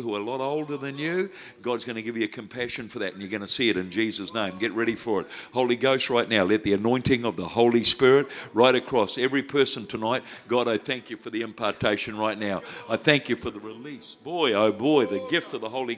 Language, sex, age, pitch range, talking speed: English, male, 60-79, 115-145 Hz, 255 wpm